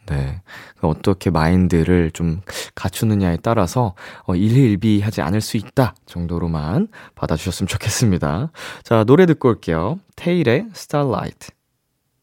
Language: Korean